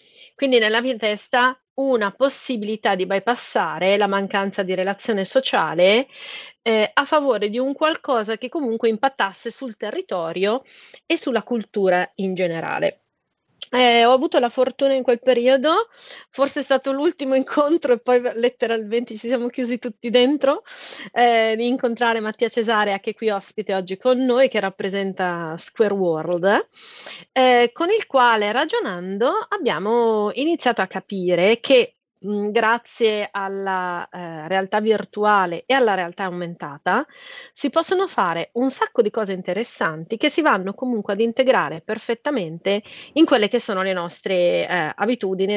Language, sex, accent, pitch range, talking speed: Italian, female, native, 200-260 Hz, 140 wpm